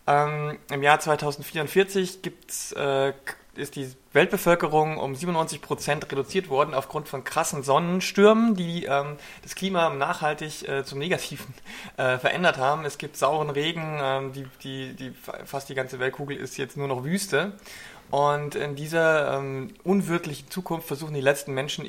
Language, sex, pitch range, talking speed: German, male, 135-165 Hz, 155 wpm